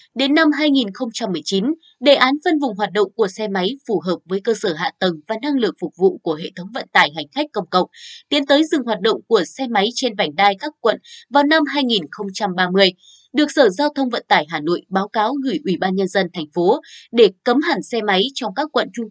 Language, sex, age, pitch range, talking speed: Vietnamese, female, 20-39, 190-275 Hz, 235 wpm